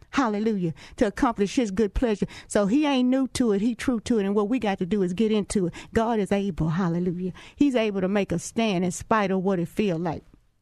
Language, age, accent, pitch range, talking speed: English, 50-69, American, 195-235 Hz, 245 wpm